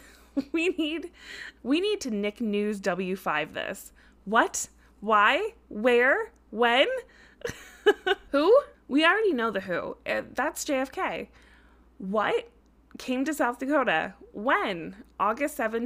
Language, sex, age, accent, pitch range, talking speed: English, female, 20-39, American, 205-275 Hz, 105 wpm